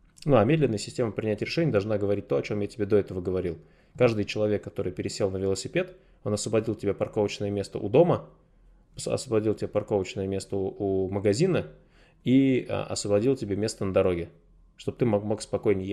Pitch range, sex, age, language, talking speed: 100-120 Hz, male, 20-39, Russian, 170 wpm